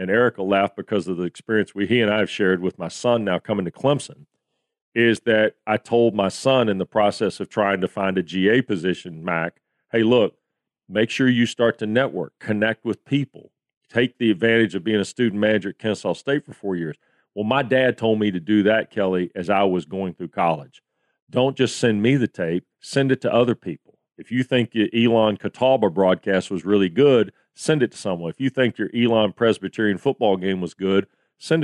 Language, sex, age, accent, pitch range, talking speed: English, male, 40-59, American, 95-120 Hz, 215 wpm